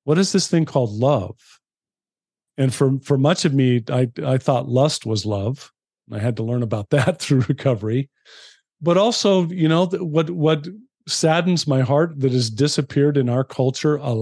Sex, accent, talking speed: male, American, 175 wpm